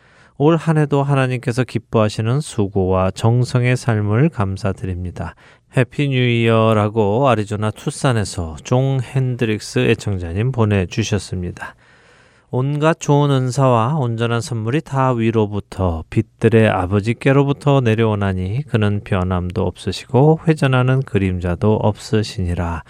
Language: Korean